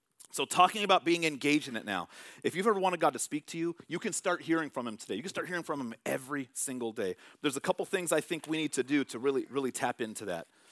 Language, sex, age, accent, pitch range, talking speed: English, male, 40-59, American, 130-205 Hz, 275 wpm